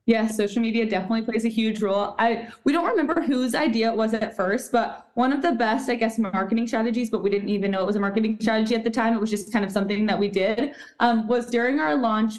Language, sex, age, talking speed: English, female, 20-39, 265 wpm